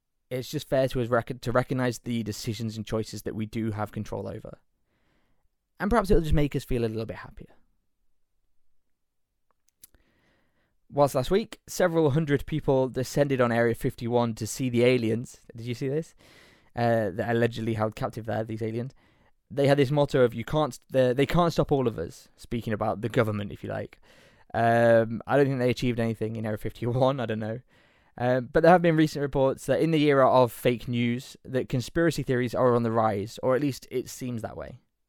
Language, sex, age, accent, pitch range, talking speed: English, male, 20-39, British, 115-150 Hz, 205 wpm